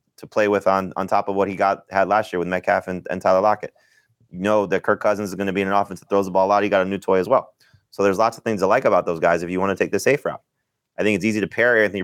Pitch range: 90-110 Hz